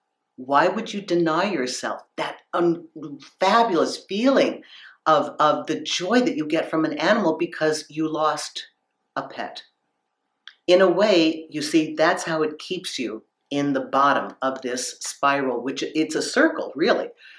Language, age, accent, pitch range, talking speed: English, 50-69, American, 140-185 Hz, 150 wpm